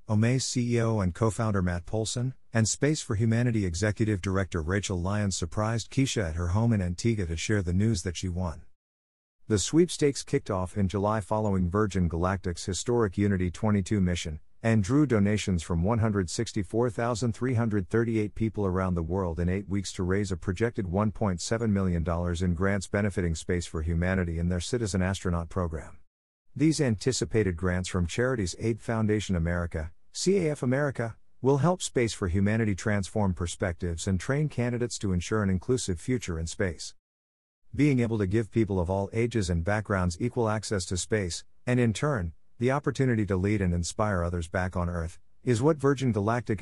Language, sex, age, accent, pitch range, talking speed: English, male, 50-69, American, 90-115 Hz, 165 wpm